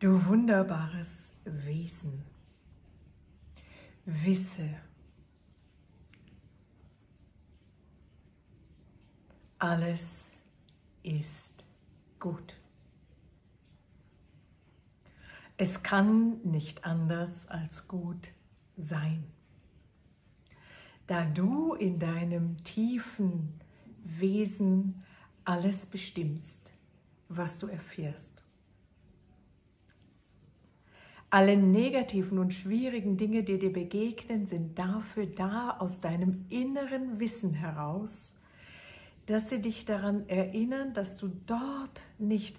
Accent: German